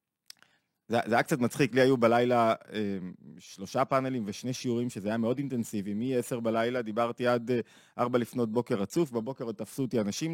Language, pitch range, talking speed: Hebrew, 115-145 Hz, 185 wpm